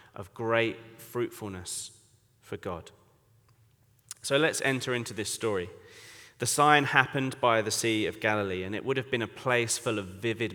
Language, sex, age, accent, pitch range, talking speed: English, male, 30-49, British, 100-115 Hz, 165 wpm